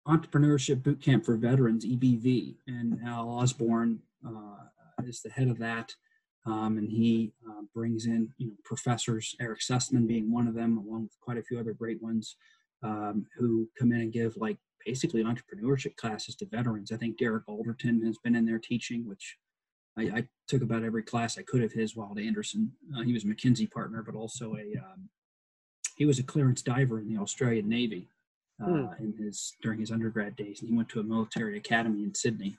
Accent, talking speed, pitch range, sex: American, 195 wpm, 115-130 Hz, male